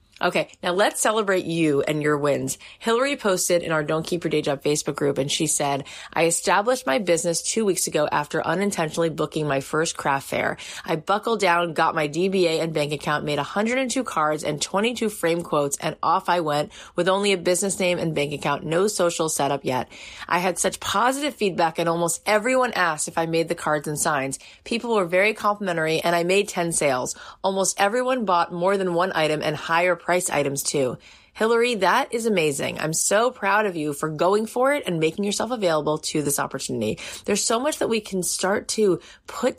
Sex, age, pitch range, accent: female, 20-39, 155-200 Hz, American